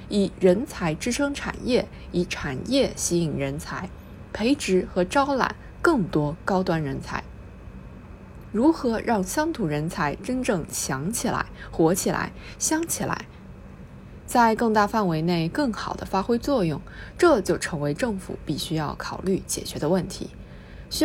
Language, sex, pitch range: Chinese, female, 160-250 Hz